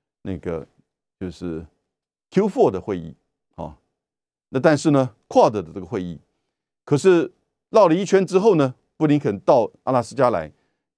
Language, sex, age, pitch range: Chinese, male, 50-69, 105-160 Hz